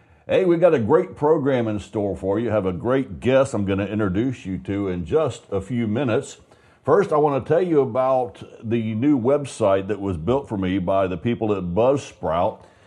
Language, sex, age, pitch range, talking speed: English, male, 50-69, 95-135 Hz, 210 wpm